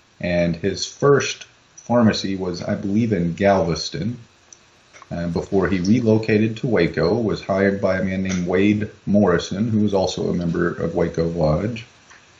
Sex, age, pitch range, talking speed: male, 30-49, 90-110 Hz, 150 wpm